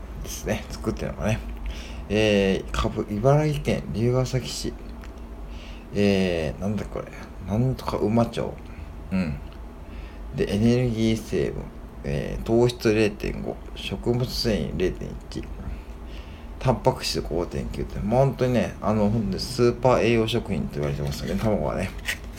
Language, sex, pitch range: Japanese, male, 75-115 Hz